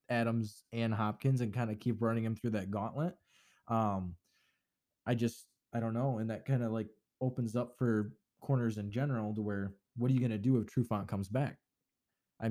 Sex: male